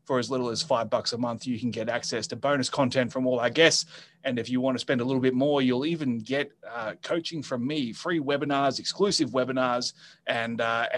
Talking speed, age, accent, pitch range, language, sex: 230 wpm, 30-49, Australian, 120-155 Hz, English, male